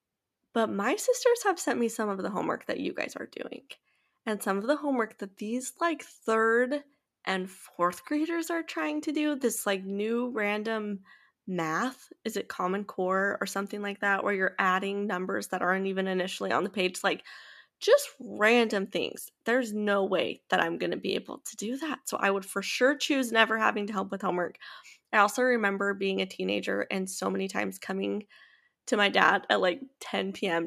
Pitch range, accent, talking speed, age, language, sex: 185-245 Hz, American, 200 wpm, 10-29, English, female